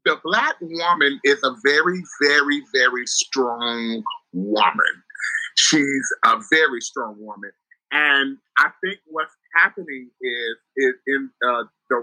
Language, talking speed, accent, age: English, 125 wpm, American, 30-49